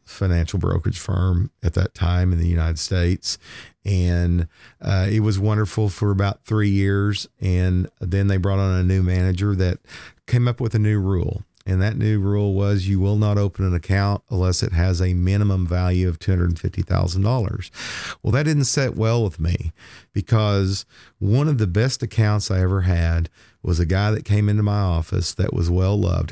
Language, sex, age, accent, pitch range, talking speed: English, male, 40-59, American, 90-110 Hz, 185 wpm